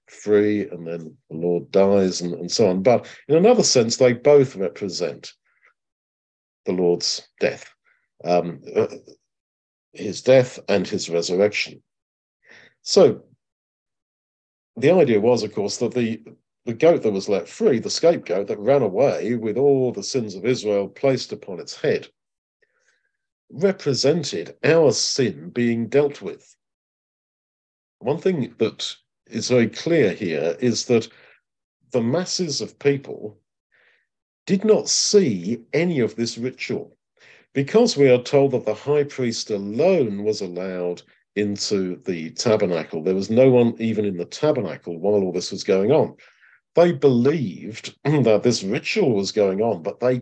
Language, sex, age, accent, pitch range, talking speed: English, male, 50-69, British, 95-135 Hz, 145 wpm